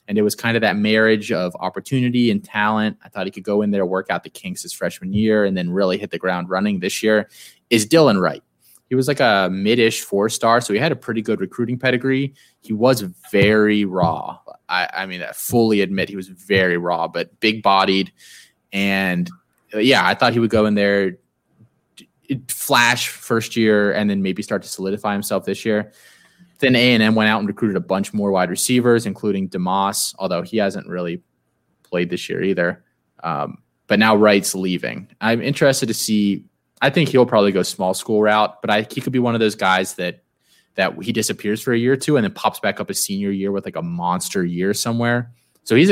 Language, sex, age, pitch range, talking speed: English, male, 20-39, 95-115 Hz, 210 wpm